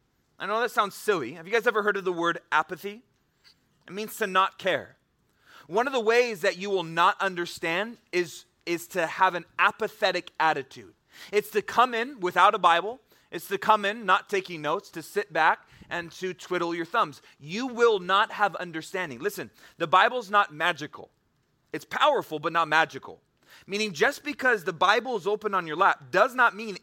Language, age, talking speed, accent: English, 30-49, 190 wpm, American